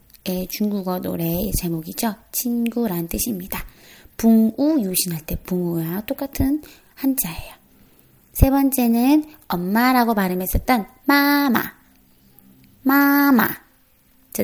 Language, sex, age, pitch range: Korean, female, 20-39, 185-245 Hz